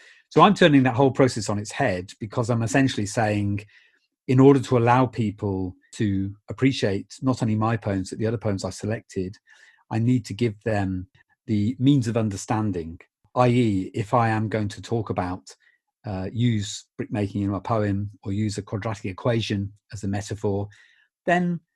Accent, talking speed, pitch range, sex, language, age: British, 175 wpm, 105-130 Hz, male, English, 40-59